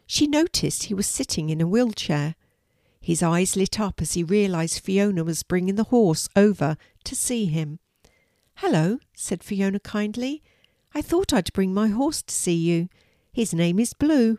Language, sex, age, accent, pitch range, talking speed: English, female, 60-79, British, 170-230 Hz, 170 wpm